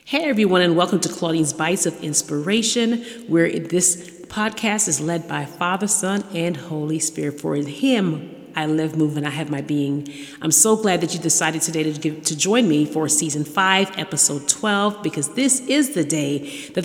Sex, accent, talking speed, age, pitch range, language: female, American, 190 wpm, 30-49, 150-175 Hz, English